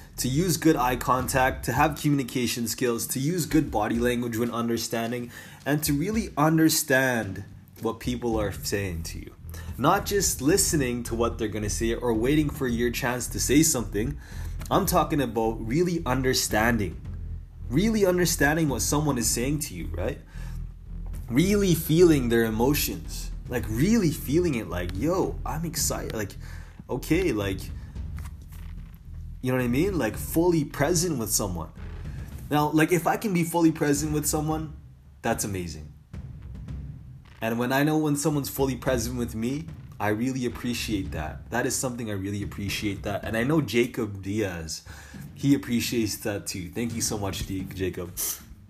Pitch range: 95-145 Hz